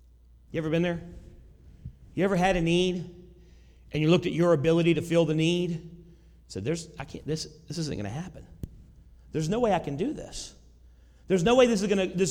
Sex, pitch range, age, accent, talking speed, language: male, 170-225 Hz, 40-59, American, 190 wpm, English